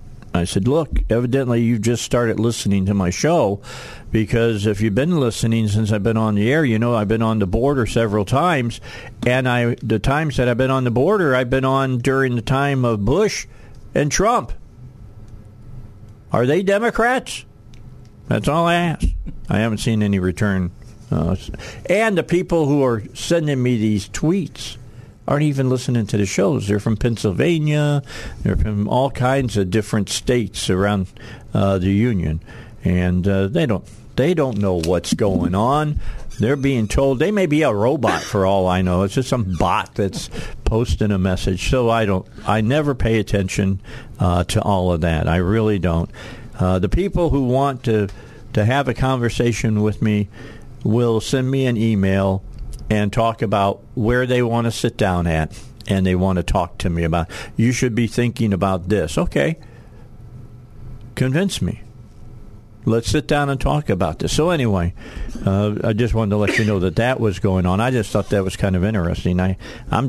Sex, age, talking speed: male, 50-69, 180 wpm